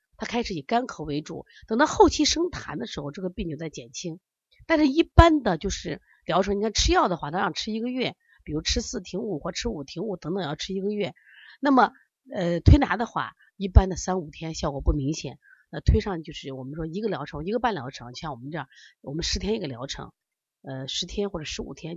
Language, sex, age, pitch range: Chinese, female, 30-49, 155-240 Hz